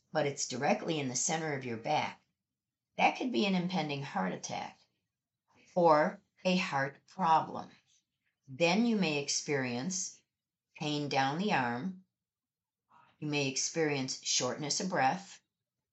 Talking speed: 130 wpm